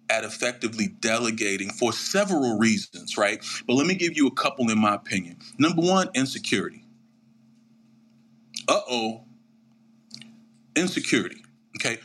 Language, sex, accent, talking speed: English, male, American, 120 wpm